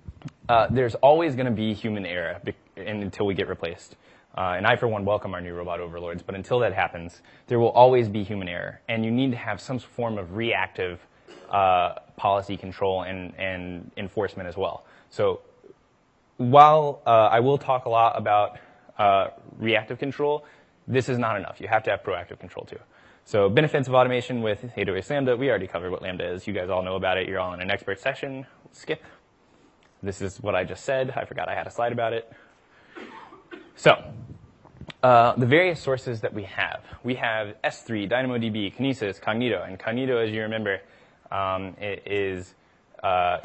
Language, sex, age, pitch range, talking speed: English, male, 20-39, 95-125 Hz, 195 wpm